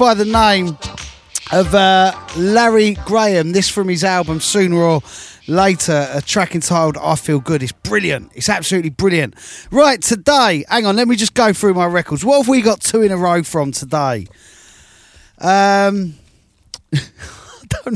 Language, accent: English, British